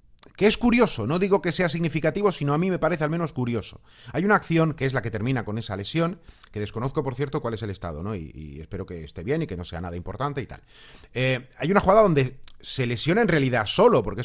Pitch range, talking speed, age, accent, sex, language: 110-165 Hz, 255 wpm, 30-49, Spanish, male, Spanish